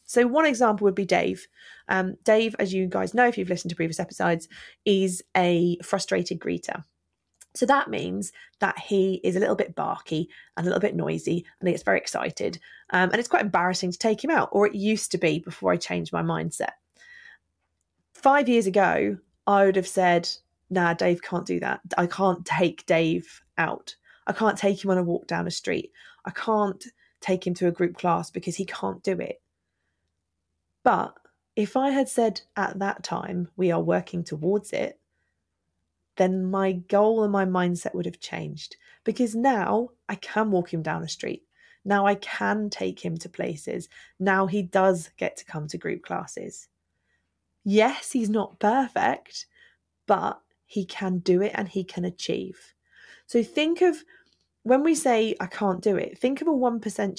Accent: British